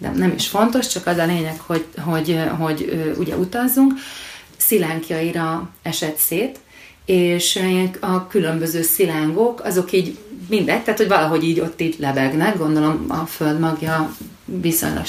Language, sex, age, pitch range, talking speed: Hungarian, female, 30-49, 160-190 Hz, 140 wpm